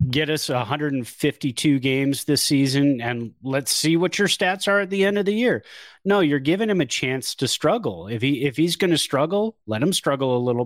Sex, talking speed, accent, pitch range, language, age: male, 220 wpm, American, 120-160 Hz, English, 30-49